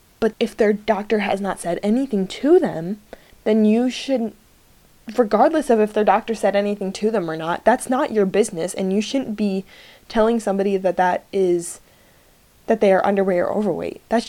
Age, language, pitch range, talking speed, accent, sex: 10-29, English, 185-225 Hz, 185 wpm, American, female